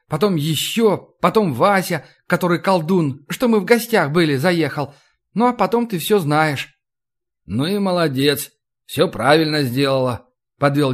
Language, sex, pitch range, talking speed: Russian, male, 125-160 Hz, 135 wpm